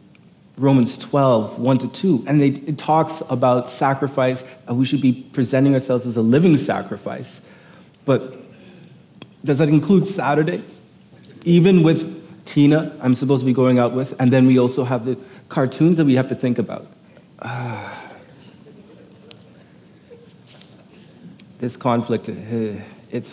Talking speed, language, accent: 130 wpm, English, American